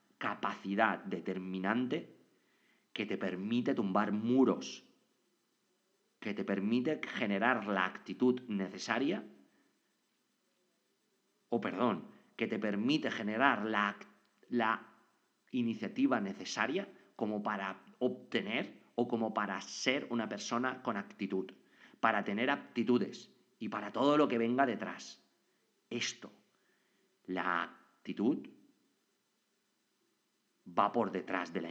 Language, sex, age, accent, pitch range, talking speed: English, male, 40-59, Spanish, 95-125 Hz, 100 wpm